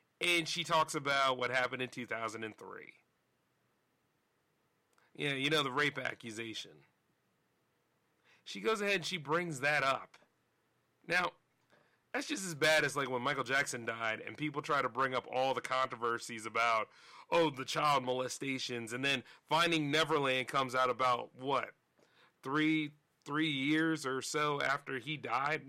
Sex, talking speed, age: male, 145 wpm, 30-49